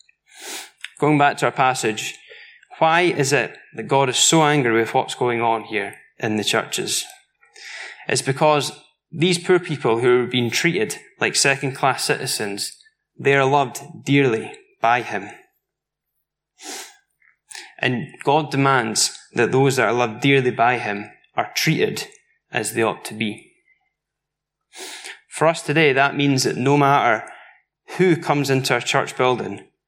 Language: English